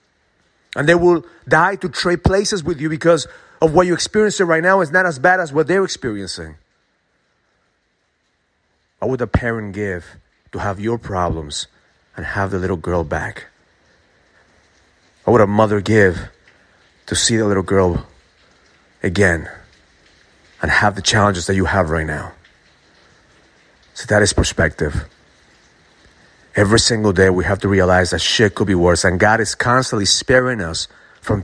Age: 30-49